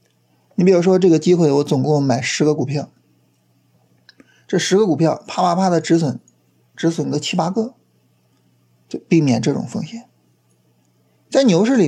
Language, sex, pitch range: Chinese, male, 130-185 Hz